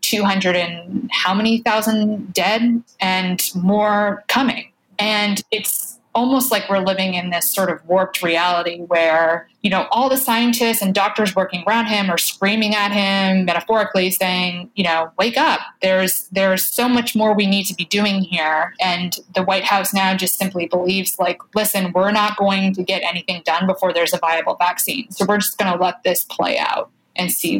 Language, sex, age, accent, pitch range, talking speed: English, female, 20-39, American, 180-210 Hz, 185 wpm